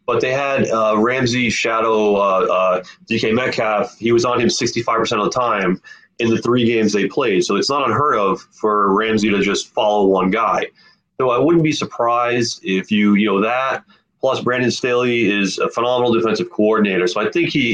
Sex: male